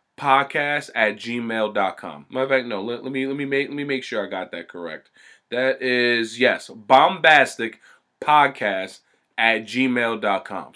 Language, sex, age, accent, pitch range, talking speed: English, male, 20-39, American, 105-135 Hz, 150 wpm